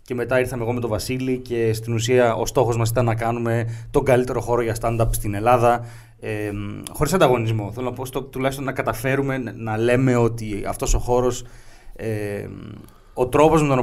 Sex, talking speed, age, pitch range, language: male, 190 wpm, 30-49, 110-135 Hz, Greek